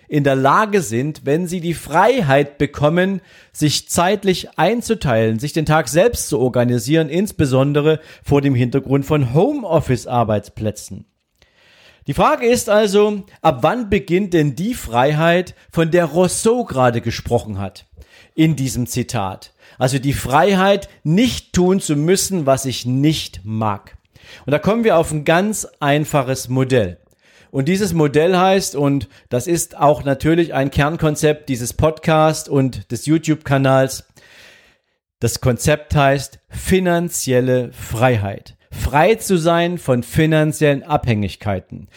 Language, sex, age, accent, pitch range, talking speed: German, male, 40-59, German, 125-175 Hz, 130 wpm